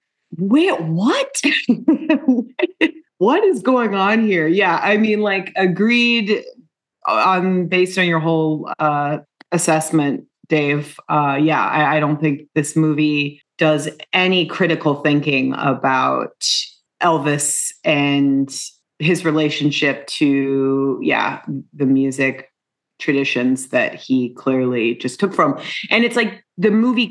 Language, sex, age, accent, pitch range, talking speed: English, female, 30-49, American, 150-215 Hz, 115 wpm